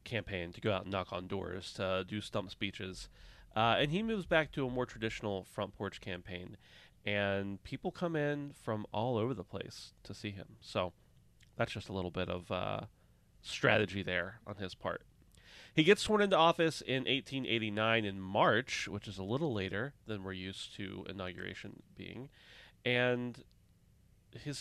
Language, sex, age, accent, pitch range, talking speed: English, male, 30-49, American, 95-120 Hz, 175 wpm